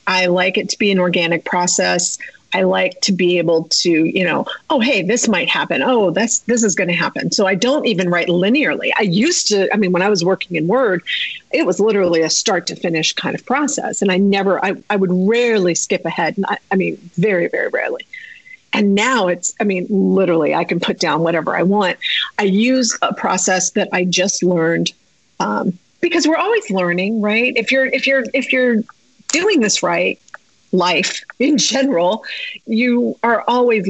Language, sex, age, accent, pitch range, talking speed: English, female, 40-59, American, 180-235 Hz, 195 wpm